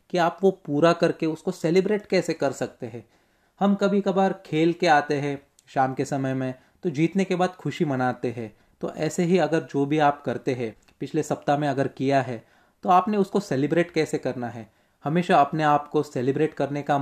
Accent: native